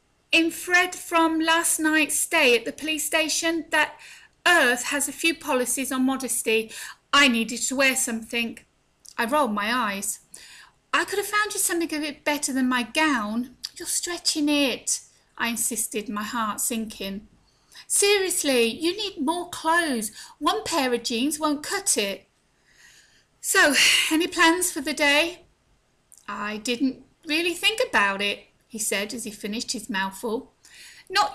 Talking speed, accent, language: 150 wpm, British, English